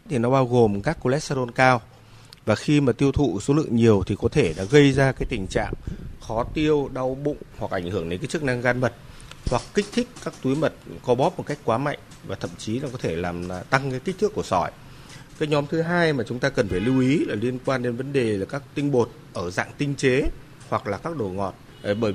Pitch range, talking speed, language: 115-145 Hz, 250 wpm, Vietnamese